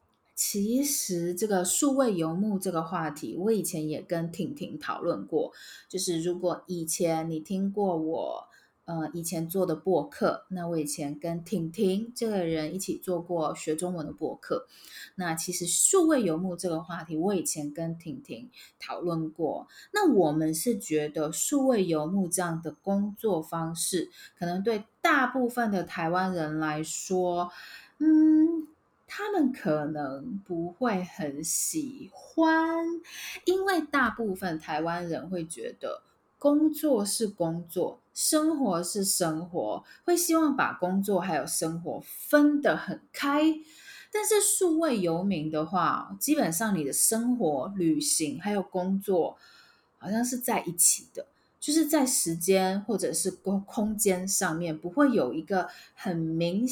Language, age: Chinese, 20-39